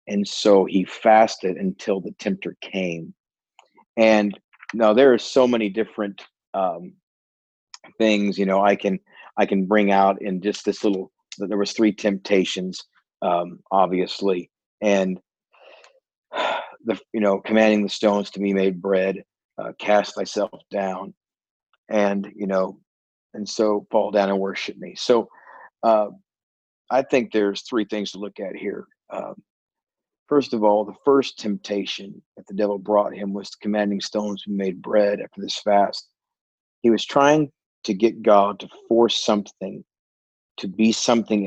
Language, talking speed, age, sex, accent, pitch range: English, 150 wpm, 40-59, male, American, 95-110 Hz